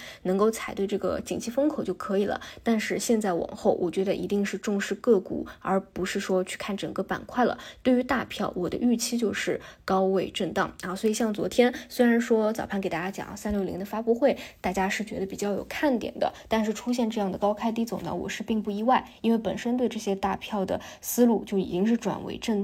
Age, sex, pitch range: 20-39, female, 195-235 Hz